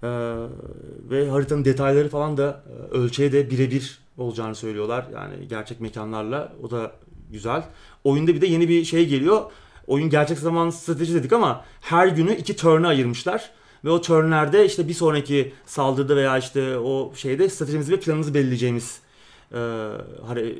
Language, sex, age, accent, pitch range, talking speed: Turkish, male, 30-49, native, 130-165 Hz, 150 wpm